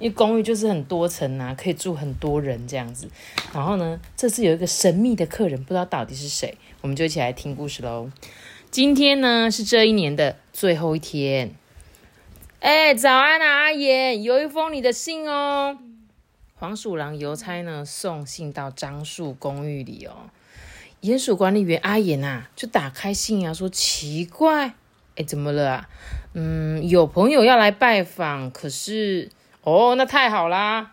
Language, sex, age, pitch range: Chinese, female, 20-39, 145-240 Hz